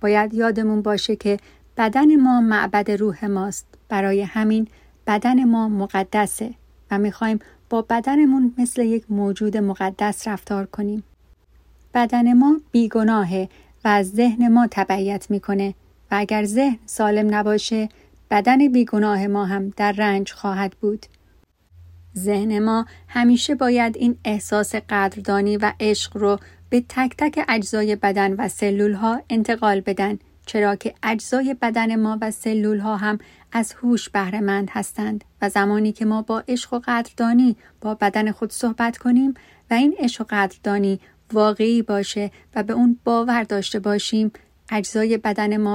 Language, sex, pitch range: Persian, female, 205-230 Hz